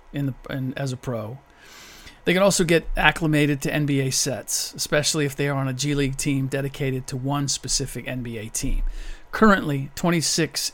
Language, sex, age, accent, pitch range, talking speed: English, male, 40-59, American, 135-155 Hz, 155 wpm